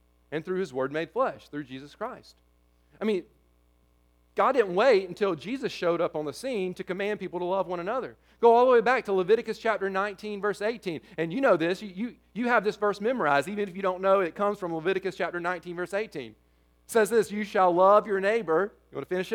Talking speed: 235 wpm